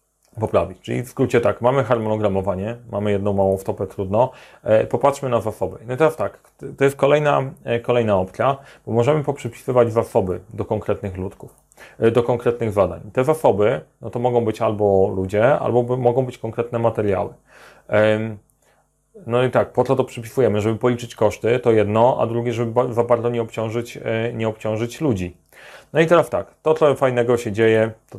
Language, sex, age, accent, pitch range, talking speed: Polish, male, 30-49, native, 105-130 Hz, 165 wpm